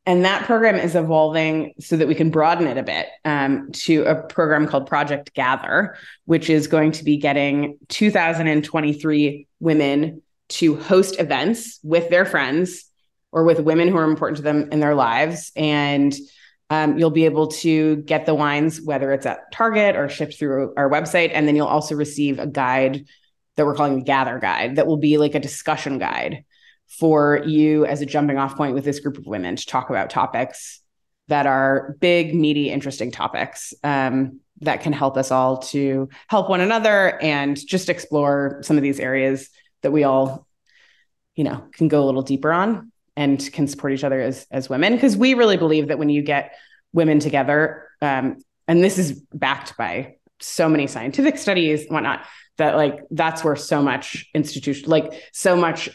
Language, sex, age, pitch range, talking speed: English, female, 20-39, 140-160 Hz, 185 wpm